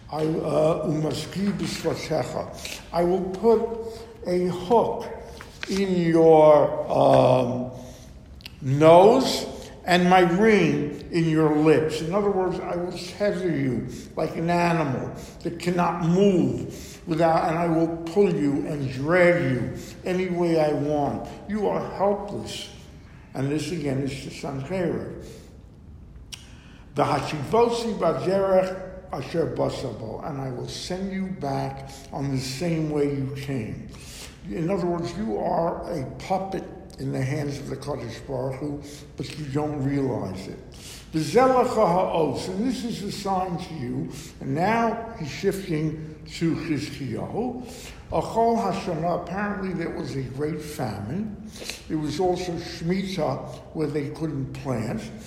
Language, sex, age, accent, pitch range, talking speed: English, male, 60-79, American, 145-185 Hz, 130 wpm